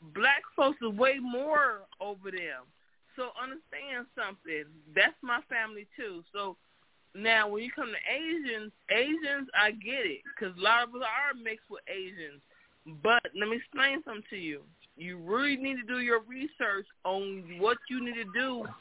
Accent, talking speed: American, 170 wpm